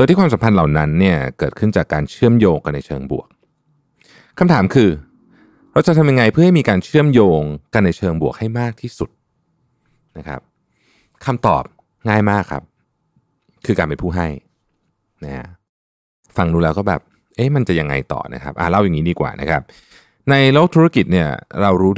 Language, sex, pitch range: Thai, male, 80-120 Hz